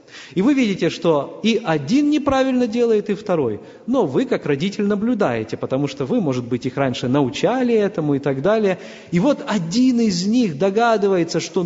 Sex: male